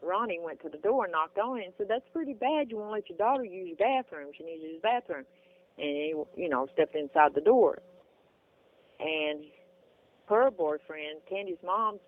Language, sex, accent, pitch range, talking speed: English, female, American, 180-275 Hz, 205 wpm